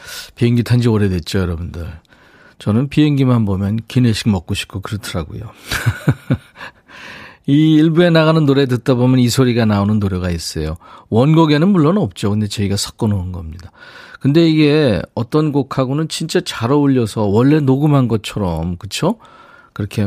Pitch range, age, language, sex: 100-150 Hz, 40-59, Korean, male